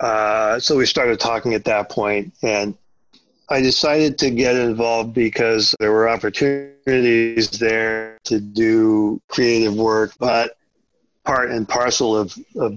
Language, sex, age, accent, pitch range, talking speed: English, male, 40-59, American, 105-115 Hz, 135 wpm